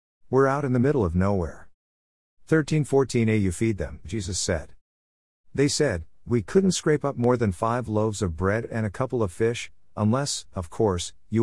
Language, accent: English, American